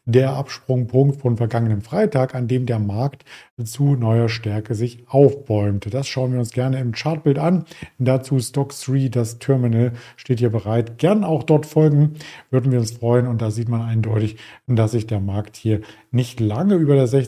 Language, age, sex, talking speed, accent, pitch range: German, 50-69, male, 175 wpm, German, 115-135 Hz